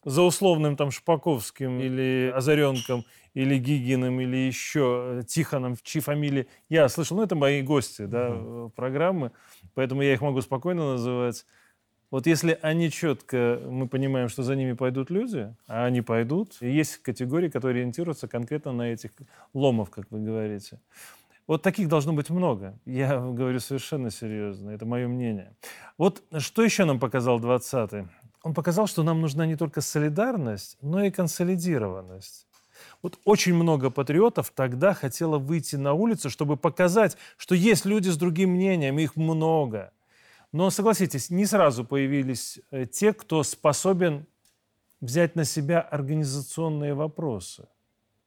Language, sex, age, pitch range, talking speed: Russian, male, 30-49, 125-170 Hz, 140 wpm